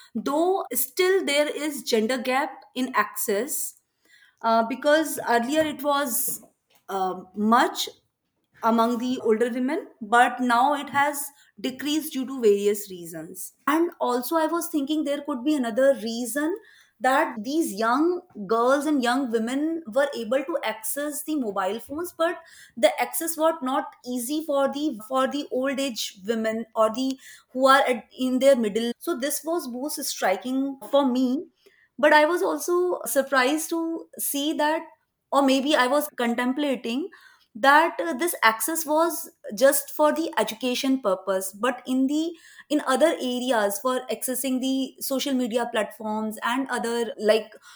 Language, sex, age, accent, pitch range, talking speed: English, female, 20-39, Indian, 235-300 Hz, 145 wpm